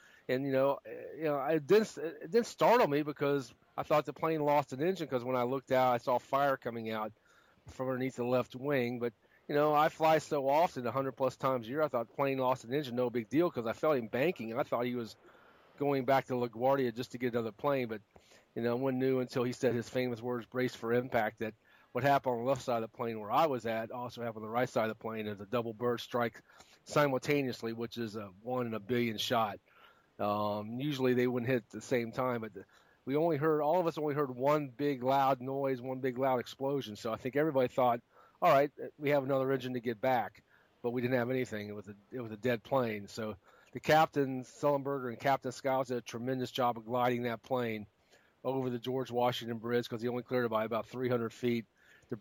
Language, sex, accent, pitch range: English, male, American, 120-135 Hz